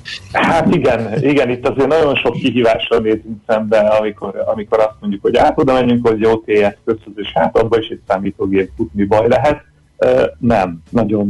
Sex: male